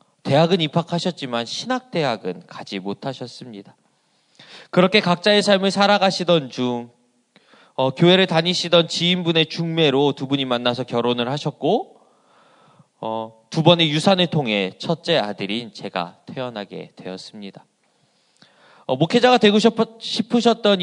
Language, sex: Korean, male